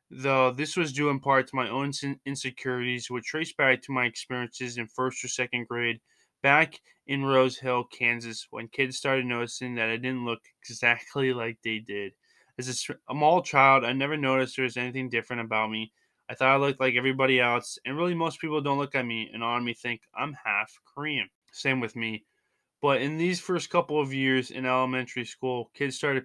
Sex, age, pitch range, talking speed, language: male, 20-39, 125-140 Hz, 200 wpm, English